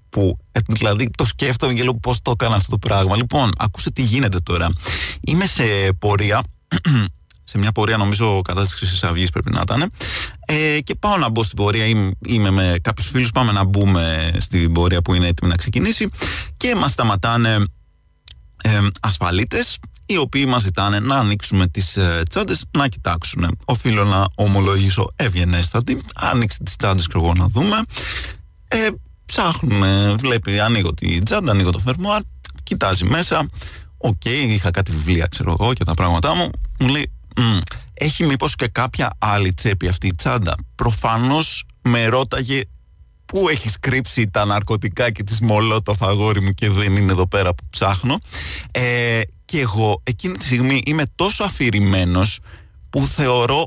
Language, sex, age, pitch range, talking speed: Greek, male, 30-49, 95-130 Hz, 160 wpm